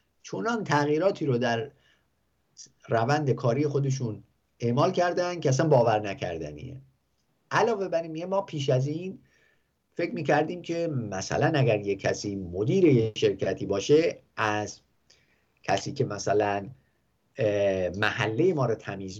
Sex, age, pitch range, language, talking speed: male, 50-69, 100-145 Hz, English, 115 wpm